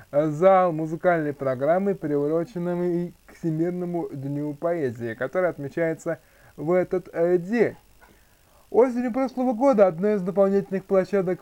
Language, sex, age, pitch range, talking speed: Russian, male, 20-39, 155-195 Hz, 105 wpm